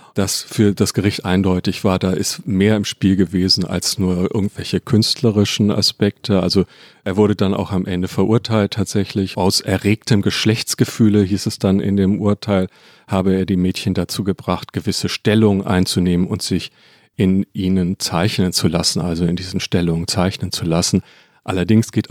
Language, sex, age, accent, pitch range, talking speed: German, male, 40-59, German, 90-105 Hz, 165 wpm